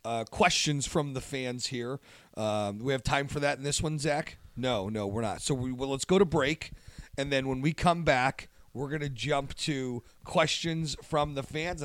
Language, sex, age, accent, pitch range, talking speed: English, male, 40-59, American, 125-155 Hz, 215 wpm